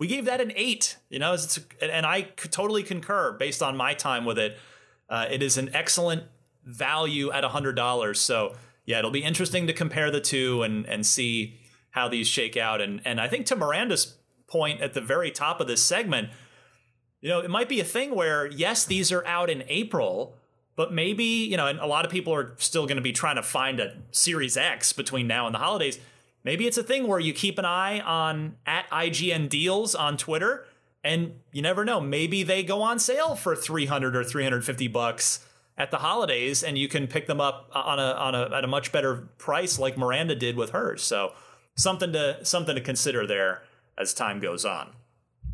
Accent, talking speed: American, 205 wpm